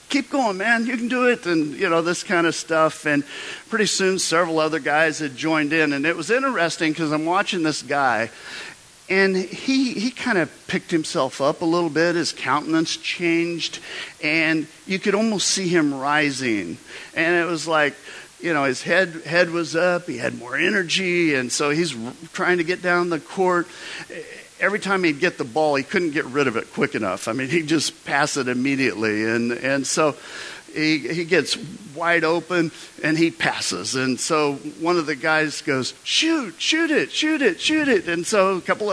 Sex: male